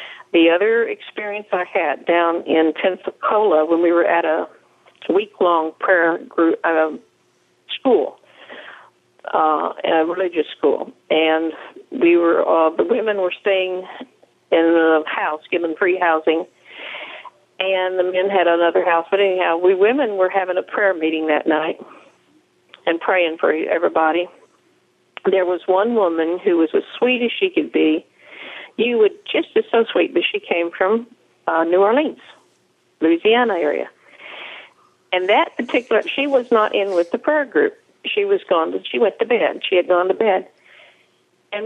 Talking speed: 155 wpm